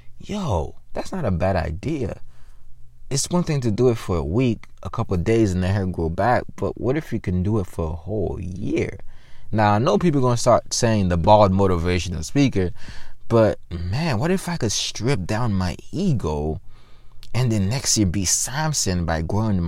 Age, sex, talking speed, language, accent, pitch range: 20-39, male, 200 wpm, English, American, 85-120 Hz